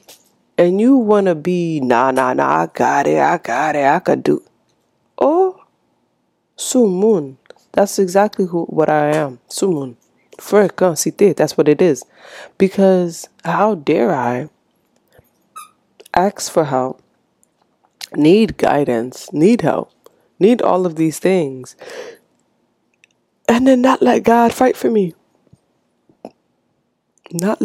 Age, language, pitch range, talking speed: 20-39, English, 150-215 Hz, 120 wpm